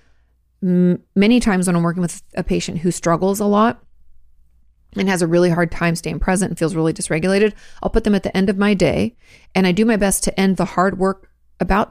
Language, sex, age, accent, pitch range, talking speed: English, female, 30-49, American, 165-185 Hz, 220 wpm